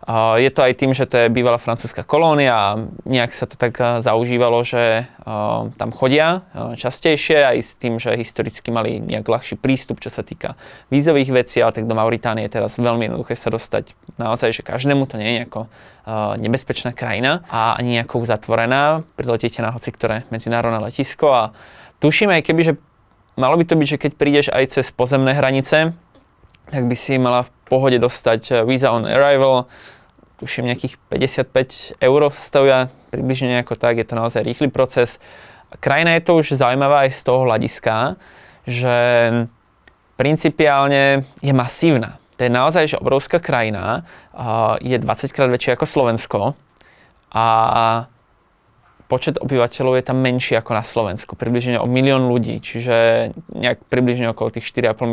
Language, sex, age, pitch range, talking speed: Slovak, male, 20-39, 115-135 Hz, 160 wpm